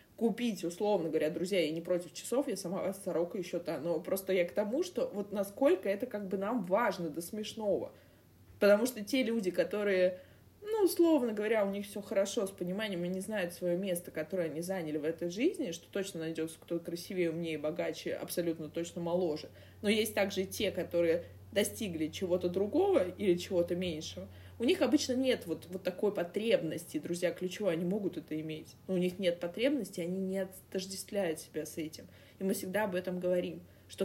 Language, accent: Russian, native